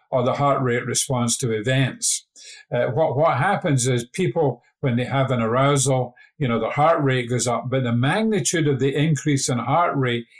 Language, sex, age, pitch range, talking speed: English, male, 50-69, 125-150 Hz, 195 wpm